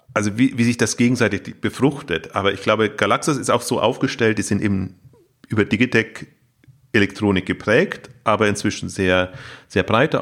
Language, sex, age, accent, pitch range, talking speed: German, male, 30-49, German, 95-120 Hz, 155 wpm